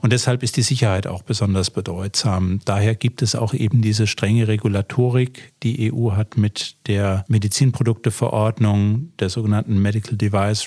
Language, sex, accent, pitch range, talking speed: German, male, German, 100-115 Hz, 145 wpm